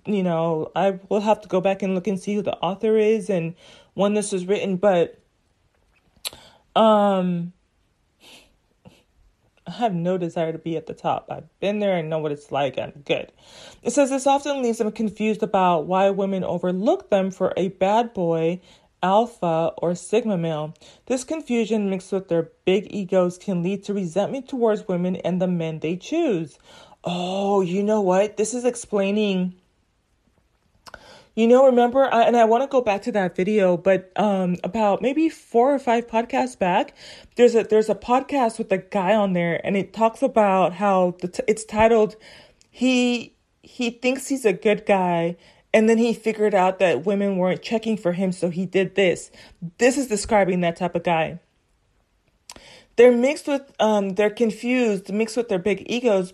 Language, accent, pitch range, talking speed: English, American, 185-225 Hz, 180 wpm